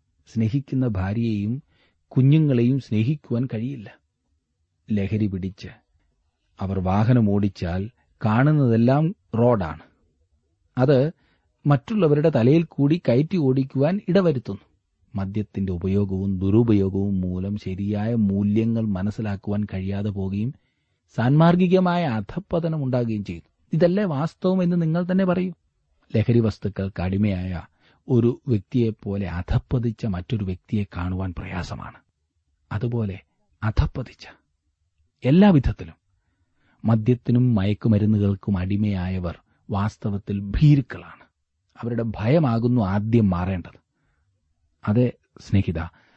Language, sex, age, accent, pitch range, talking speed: Malayalam, male, 30-49, native, 95-130 Hz, 80 wpm